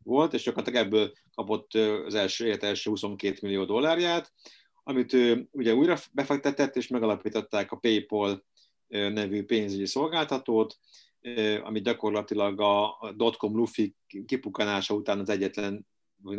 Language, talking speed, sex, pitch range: Hungarian, 115 wpm, male, 100-115 Hz